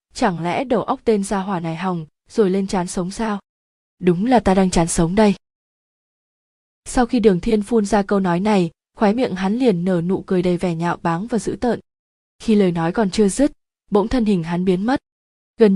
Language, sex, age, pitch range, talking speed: Vietnamese, female, 20-39, 185-230 Hz, 215 wpm